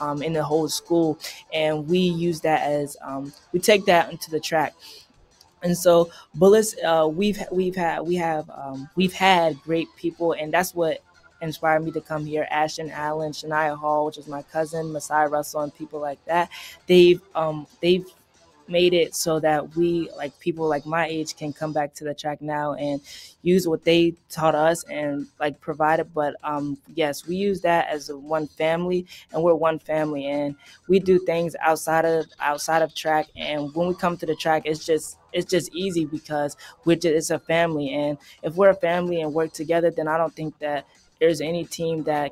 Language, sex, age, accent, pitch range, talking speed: English, female, 20-39, American, 150-170 Hz, 200 wpm